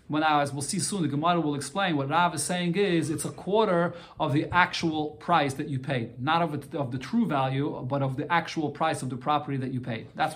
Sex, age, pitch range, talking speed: male, 40-59, 145-185 Hz, 235 wpm